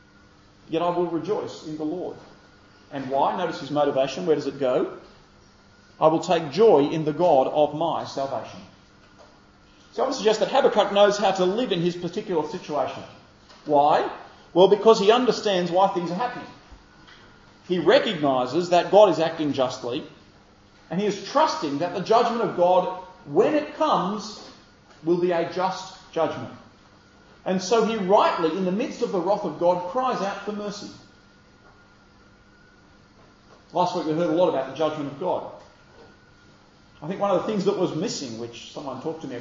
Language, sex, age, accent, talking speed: English, male, 40-59, Australian, 175 wpm